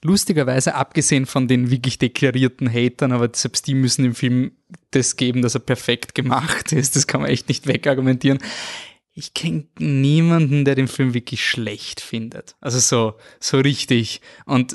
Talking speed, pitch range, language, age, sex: 165 wpm, 125-145 Hz, German, 20-39, male